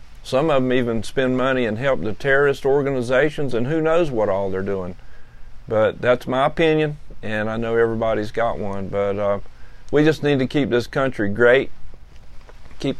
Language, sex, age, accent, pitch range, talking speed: English, male, 40-59, American, 105-135 Hz, 180 wpm